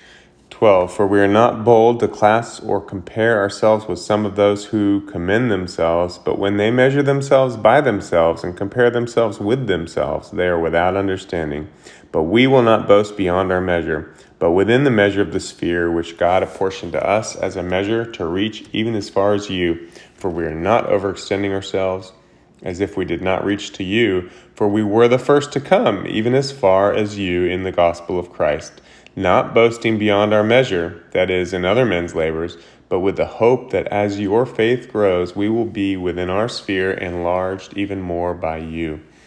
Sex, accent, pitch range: male, American, 90-110 Hz